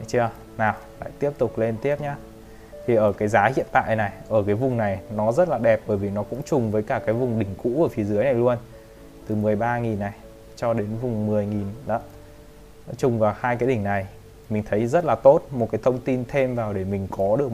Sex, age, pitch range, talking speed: male, 20-39, 105-130 Hz, 235 wpm